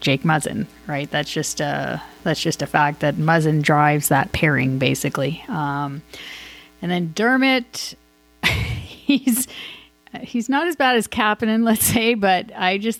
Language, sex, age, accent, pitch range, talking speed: English, female, 30-49, American, 150-185 Hz, 150 wpm